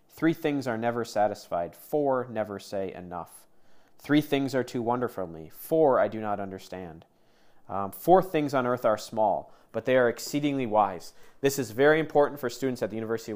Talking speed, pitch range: 190 wpm, 110-140 Hz